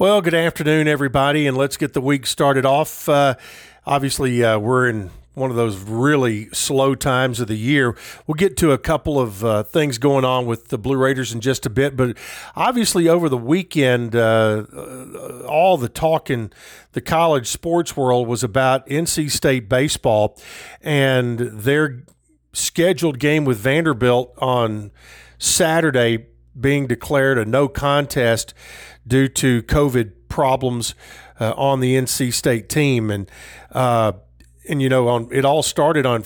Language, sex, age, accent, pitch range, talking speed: English, male, 50-69, American, 115-140 Hz, 155 wpm